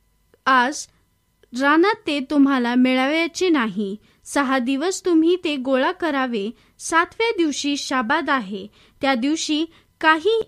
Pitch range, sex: 260-355 Hz, female